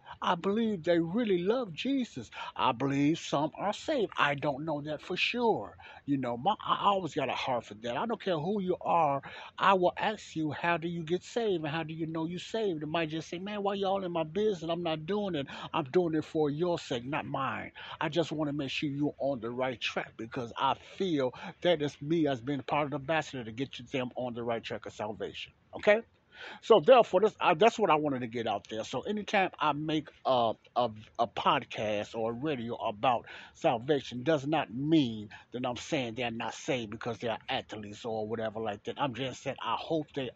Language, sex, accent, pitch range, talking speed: English, male, American, 125-170 Hz, 225 wpm